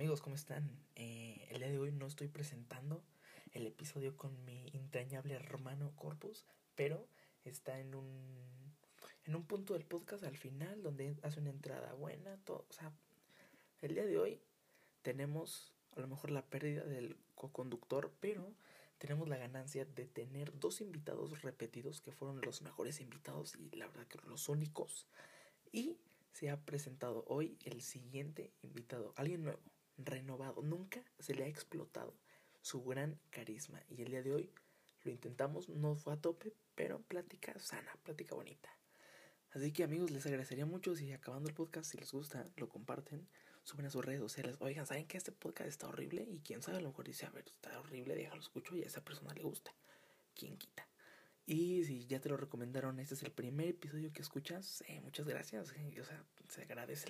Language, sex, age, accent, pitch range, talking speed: Spanish, male, 20-39, Mexican, 130-155 Hz, 185 wpm